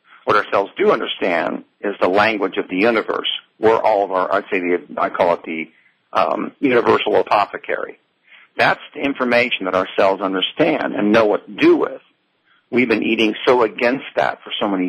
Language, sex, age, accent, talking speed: English, male, 50-69, American, 185 wpm